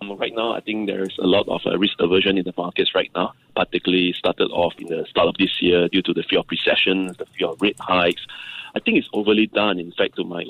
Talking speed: 250 wpm